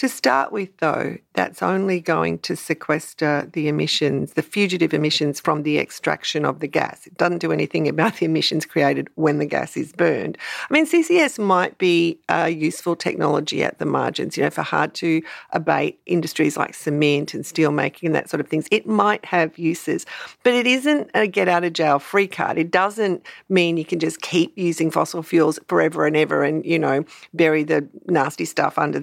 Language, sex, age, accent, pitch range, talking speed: English, female, 50-69, Australian, 155-205 Hz, 200 wpm